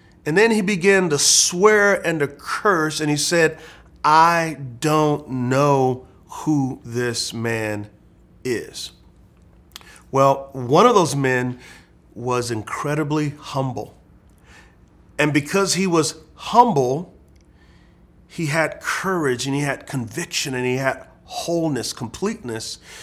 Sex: male